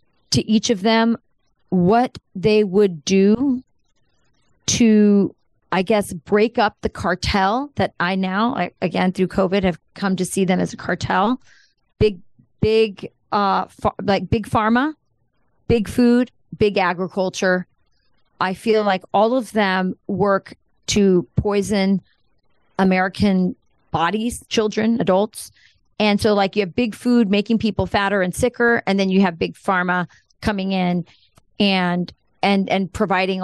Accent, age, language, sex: American, 30-49, English, female